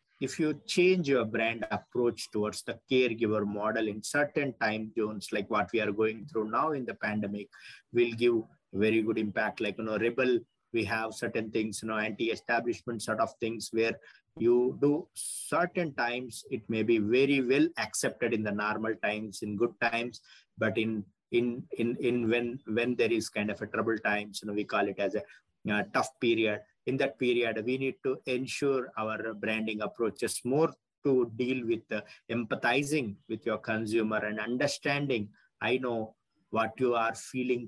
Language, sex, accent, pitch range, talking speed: English, male, Indian, 110-125 Hz, 180 wpm